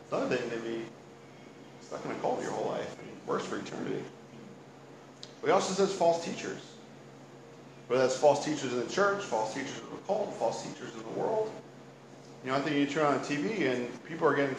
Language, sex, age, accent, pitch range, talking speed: English, male, 40-59, American, 125-160 Hz, 220 wpm